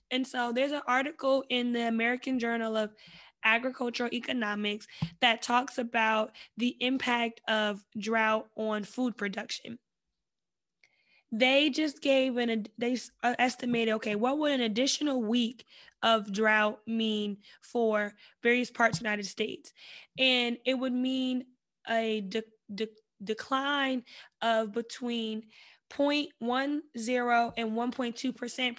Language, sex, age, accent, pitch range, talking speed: English, female, 10-29, American, 220-260 Hz, 115 wpm